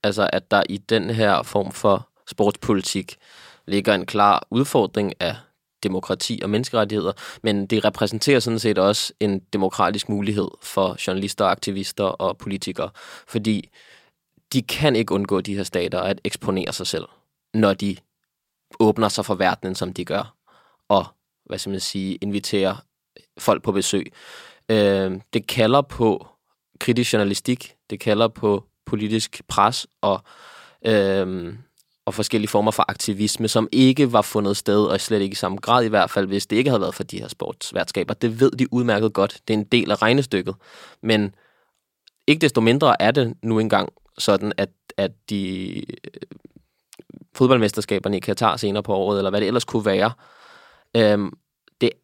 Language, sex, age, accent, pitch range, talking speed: Danish, male, 20-39, native, 100-115 Hz, 155 wpm